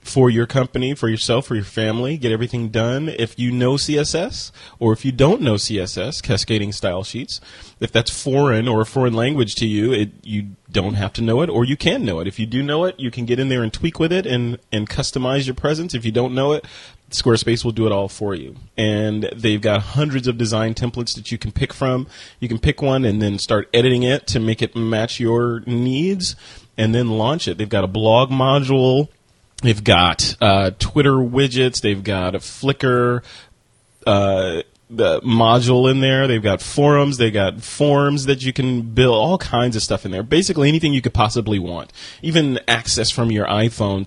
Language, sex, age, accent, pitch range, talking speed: English, male, 30-49, American, 105-130 Hz, 205 wpm